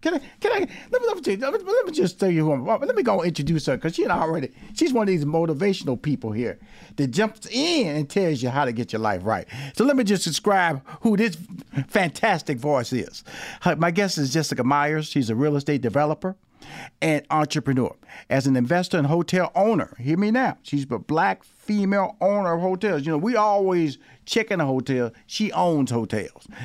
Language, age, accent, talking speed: English, 40-59, American, 205 wpm